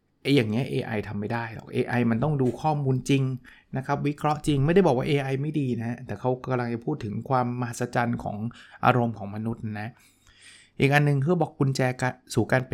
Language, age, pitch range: Thai, 20-39, 115-140 Hz